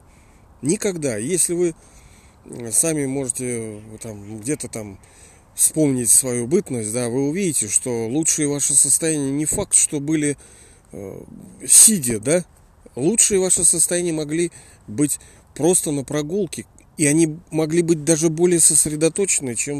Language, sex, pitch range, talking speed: Russian, male, 110-155 Hz, 125 wpm